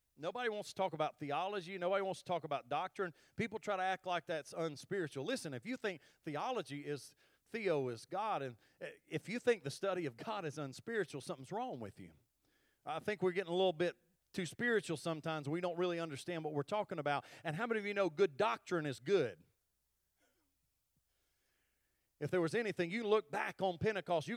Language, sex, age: English, male, 40-59